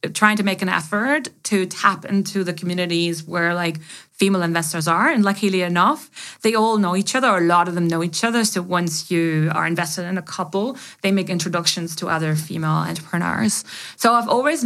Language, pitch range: English, 175-215 Hz